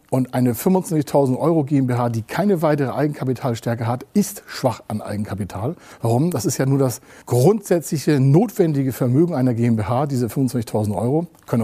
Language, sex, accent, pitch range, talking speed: German, male, German, 120-160 Hz, 150 wpm